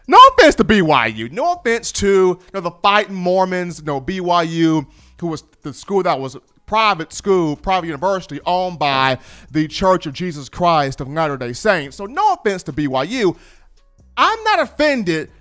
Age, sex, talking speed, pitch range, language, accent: 30-49, male, 175 wpm, 165-240 Hz, English, American